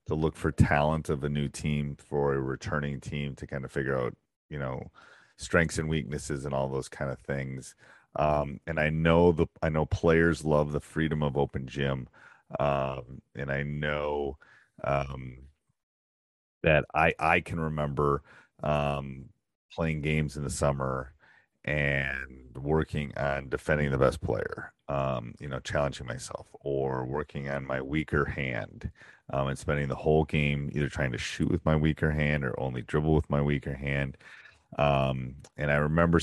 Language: English